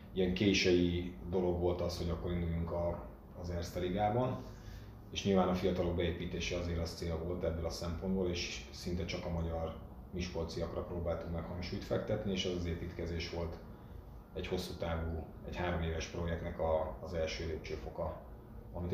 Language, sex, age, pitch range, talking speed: Hungarian, male, 30-49, 85-90 Hz, 160 wpm